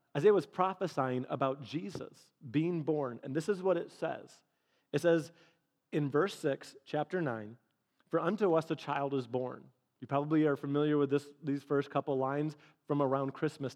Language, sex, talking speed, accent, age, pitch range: English, male, 175 wpm, American, 30-49, 130-160 Hz